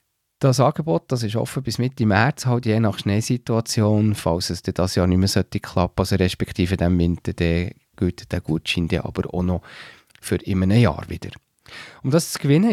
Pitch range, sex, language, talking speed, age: 90-125 Hz, male, German, 190 wpm, 40-59